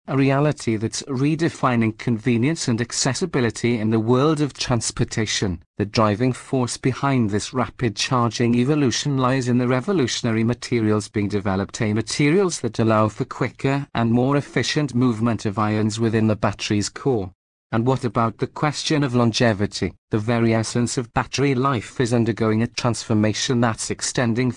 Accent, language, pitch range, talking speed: British, English, 110-130 Hz, 150 wpm